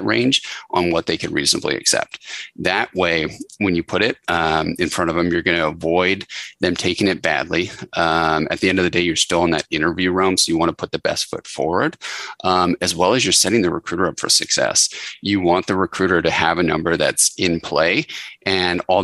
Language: English